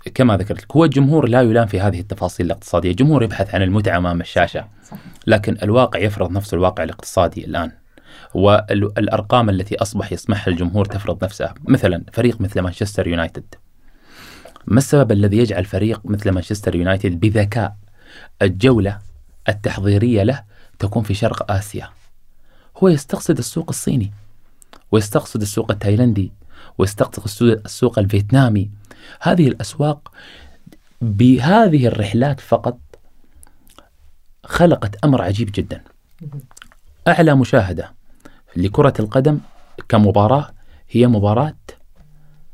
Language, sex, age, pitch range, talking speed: Arabic, male, 20-39, 100-130 Hz, 110 wpm